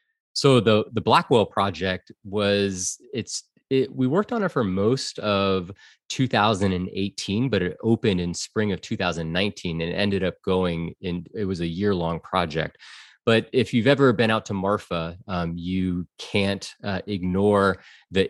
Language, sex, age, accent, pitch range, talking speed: English, male, 30-49, American, 85-105 Hz, 155 wpm